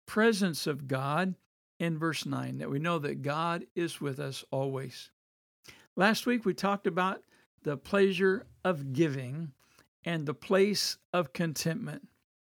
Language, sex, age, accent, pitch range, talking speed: English, male, 60-79, American, 135-190 Hz, 140 wpm